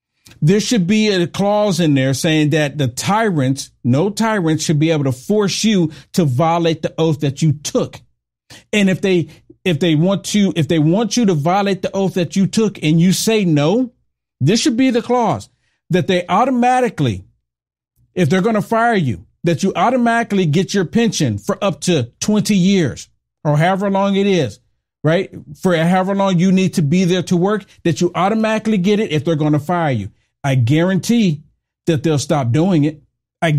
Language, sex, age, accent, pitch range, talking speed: English, male, 50-69, American, 150-200 Hz, 195 wpm